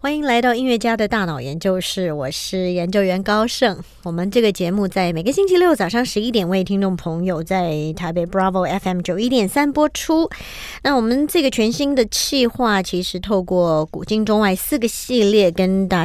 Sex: male